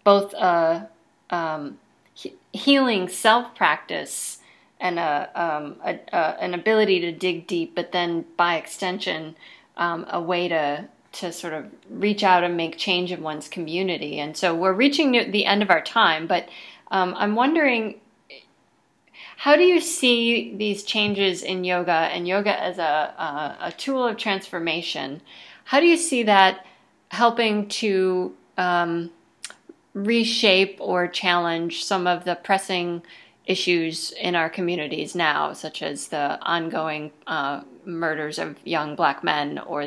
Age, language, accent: 30-49, English, American